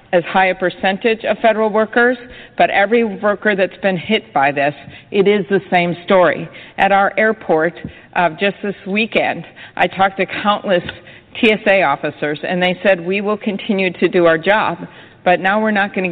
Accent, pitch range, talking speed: American, 175-205 Hz, 180 wpm